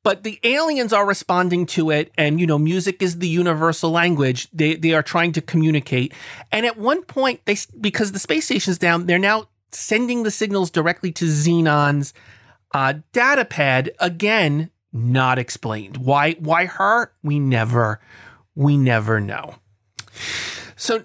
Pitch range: 155-220 Hz